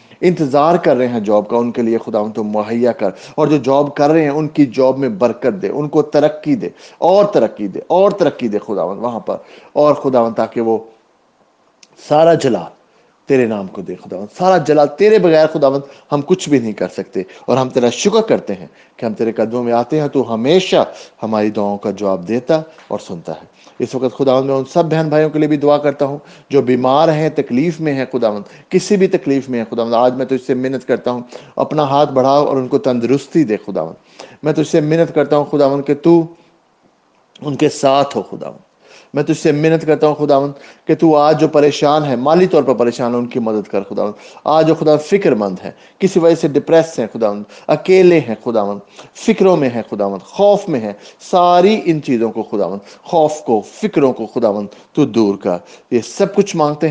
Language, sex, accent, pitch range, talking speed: English, male, Indian, 120-155 Hz, 185 wpm